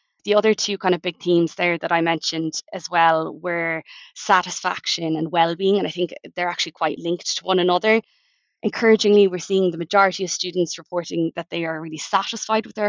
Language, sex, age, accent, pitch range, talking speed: English, female, 20-39, Irish, 160-185 Hz, 195 wpm